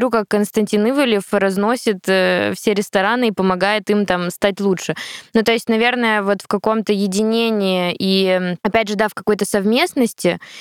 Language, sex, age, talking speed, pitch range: Russian, female, 20-39, 155 wpm, 185-215 Hz